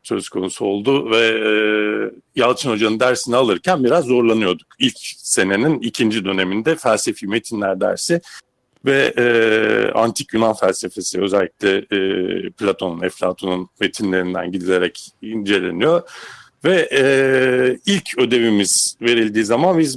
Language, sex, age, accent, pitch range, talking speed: Turkish, male, 50-69, native, 110-150 Hz, 100 wpm